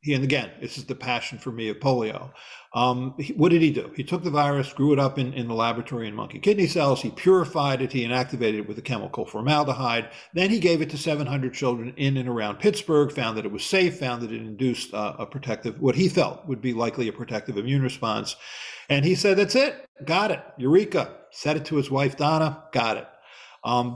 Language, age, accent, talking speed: English, 50-69, American, 225 wpm